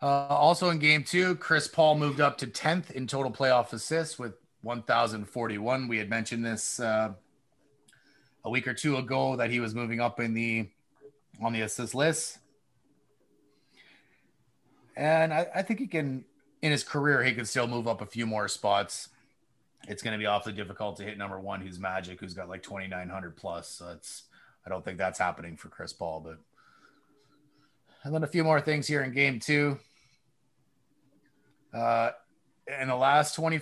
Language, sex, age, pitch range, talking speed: English, male, 30-49, 110-145 Hz, 170 wpm